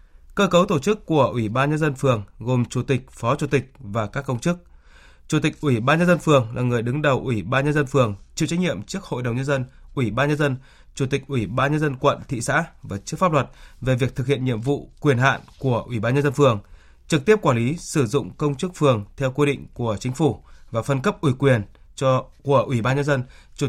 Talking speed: 260 wpm